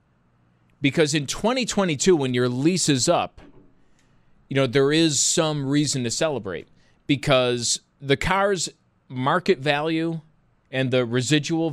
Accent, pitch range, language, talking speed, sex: American, 110-145 Hz, English, 125 wpm, male